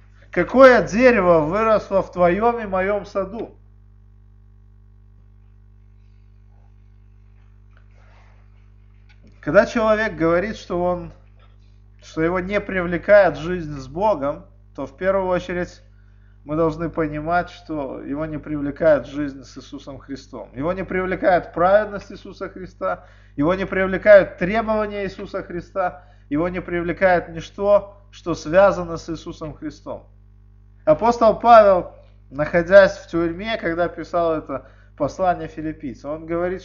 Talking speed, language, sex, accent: 110 wpm, Russian, male, native